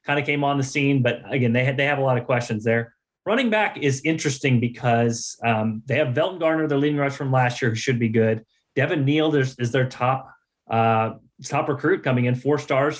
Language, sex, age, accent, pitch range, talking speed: English, male, 30-49, American, 115-145 Hz, 235 wpm